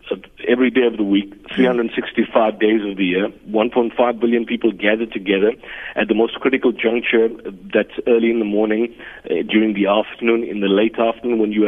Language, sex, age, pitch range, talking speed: English, male, 40-59, 105-120 Hz, 185 wpm